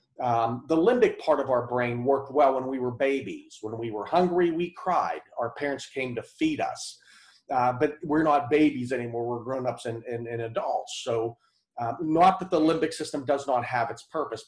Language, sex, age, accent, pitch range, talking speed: English, male, 40-59, American, 120-145 Hz, 205 wpm